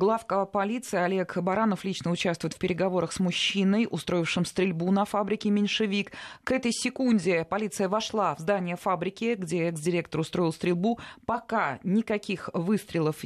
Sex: female